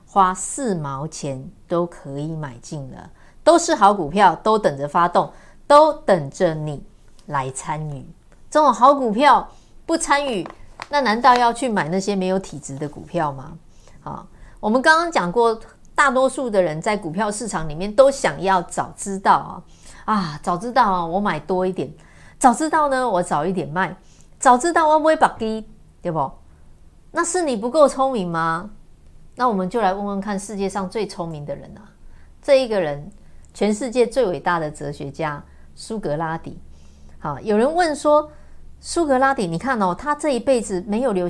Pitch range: 165-255 Hz